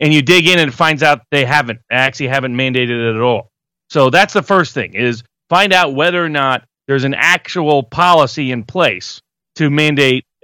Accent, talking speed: American, 195 wpm